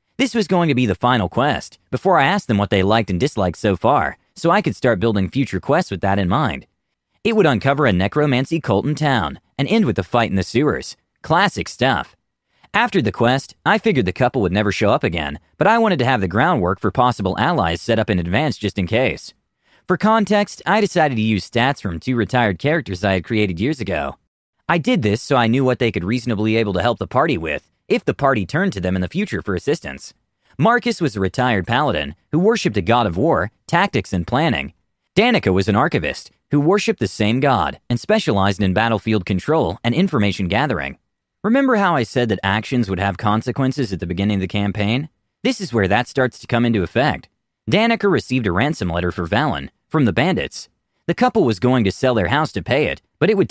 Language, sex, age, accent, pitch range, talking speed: English, male, 30-49, American, 100-150 Hz, 225 wpm